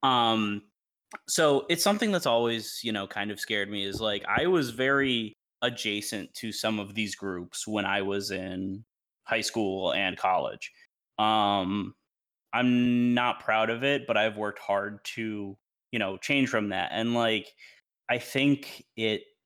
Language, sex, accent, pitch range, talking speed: English, male, American, 105-125 Hz, 160 wpm